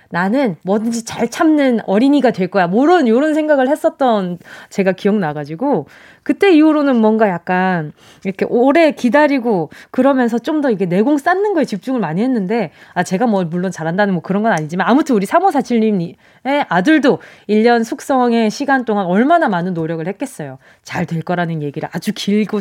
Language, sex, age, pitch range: Korean, female, 20-39, 185-280 Hz